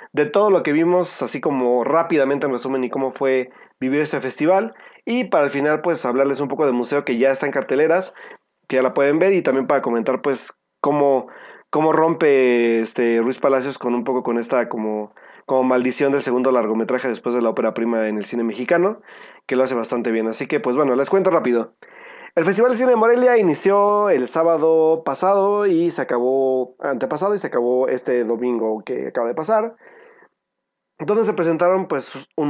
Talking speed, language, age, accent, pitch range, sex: 200 wpm, Spanish, 30-49, Mexican, 125-170 Hz, male